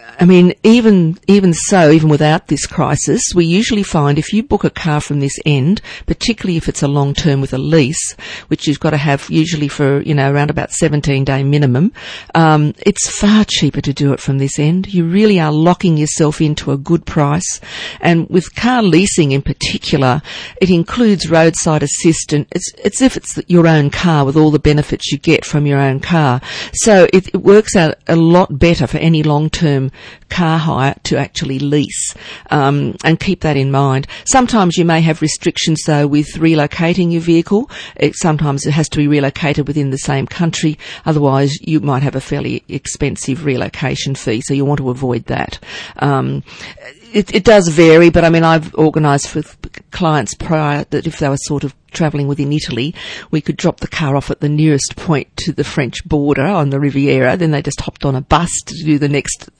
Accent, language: Australian, English